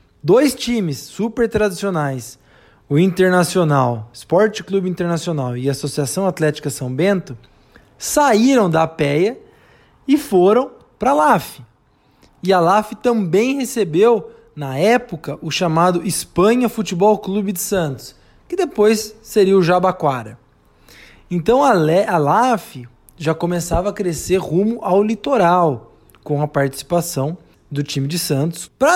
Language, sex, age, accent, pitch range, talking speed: Portuguese, male, 20-39, Brazilian, 135-200 Hz, 120 wpm